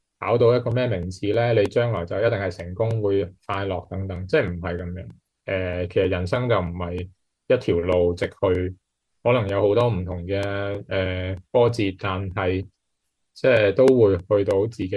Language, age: Chinese, 20-39